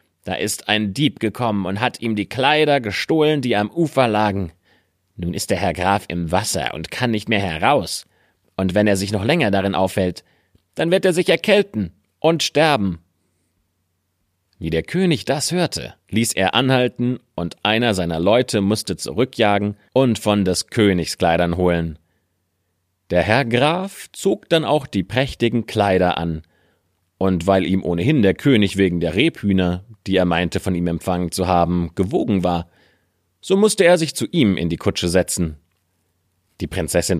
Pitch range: 90-110 Hz